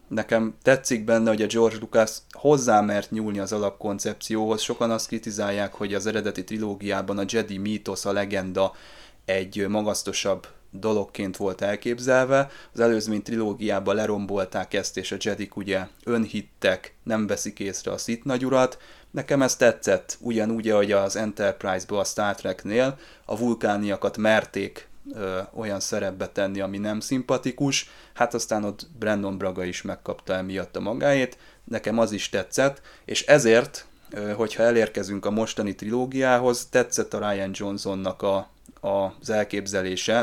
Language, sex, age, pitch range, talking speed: Hungarian, male, 30-49, 100-115 Hz, 135 wpm